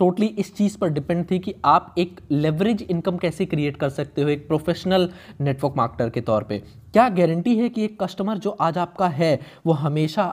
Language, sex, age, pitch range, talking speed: Hindi, male, 20-39, 140-190 Hz, 205 wpm